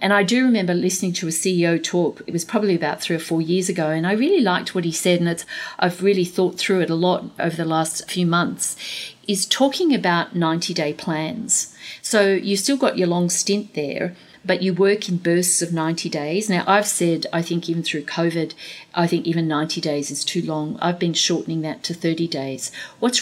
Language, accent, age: English, Australian, 50-69